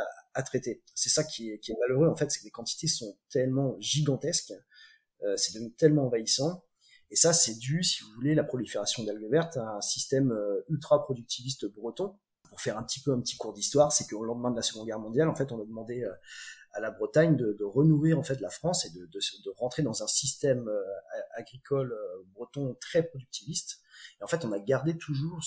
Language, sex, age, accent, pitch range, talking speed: French, male, 30-49, French, 115-155 Hz, 215 wpm